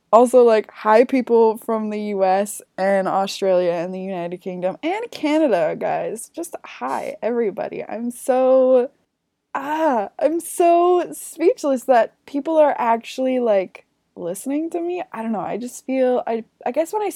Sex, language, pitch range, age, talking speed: female, English, 185-265 Hz, 20-39, 155 wpm